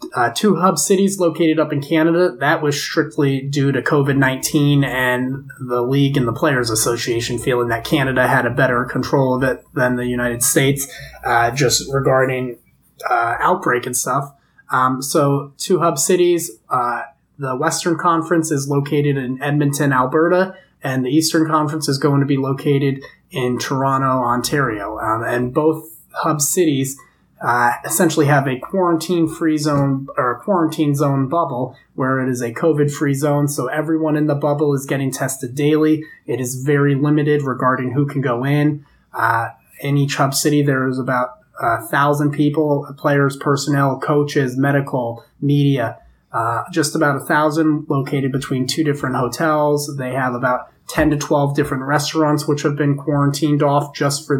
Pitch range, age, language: 130-155 Hz, 20-39, English